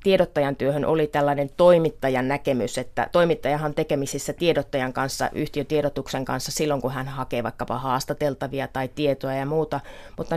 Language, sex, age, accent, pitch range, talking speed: Finnish, female, 30-49, native, 140-175 Hz, 145 wpm